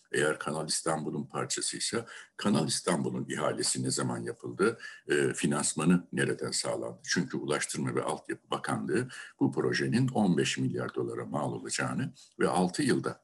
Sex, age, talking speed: male, 60-79, 130 wpm